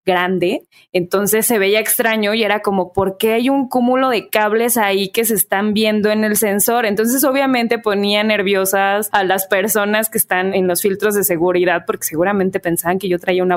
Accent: Mexican